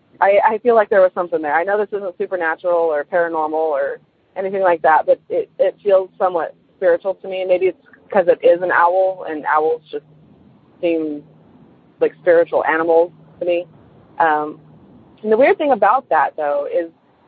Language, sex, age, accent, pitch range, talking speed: English, female, 30-49, American, 165-220 Hz, 185 wpm